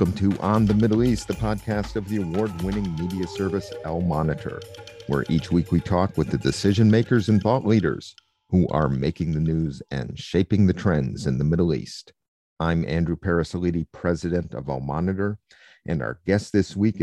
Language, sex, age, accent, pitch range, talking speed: English, male, 50-69, American, 80-100 Hz, 185 wpm